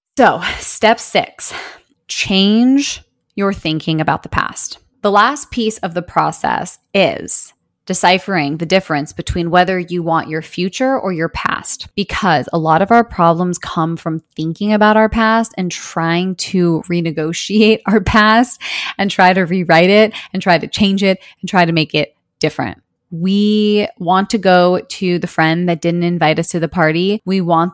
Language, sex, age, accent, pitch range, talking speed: English, female, 20-39, American, 160-190 Hz, 170 wpm